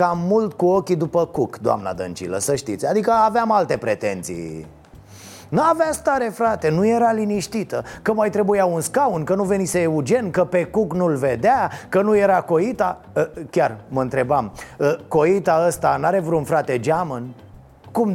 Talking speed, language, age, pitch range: 160 wpm, Romanian, 30-49, 160-215 Hz